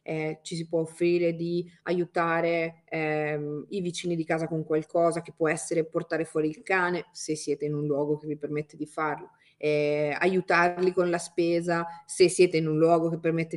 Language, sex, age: Italian, female, 30-49